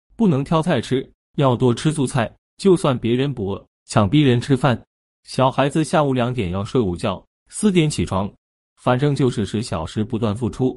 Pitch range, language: 100-150 Hz, Chinese